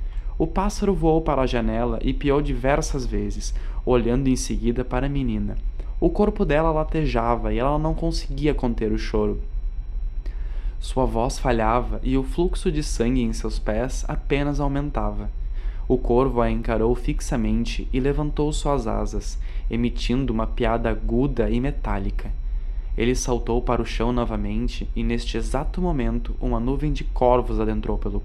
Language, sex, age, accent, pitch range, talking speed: Portuguese, male, 10-29, Brazilian, 110-140 Hz, 150 wpm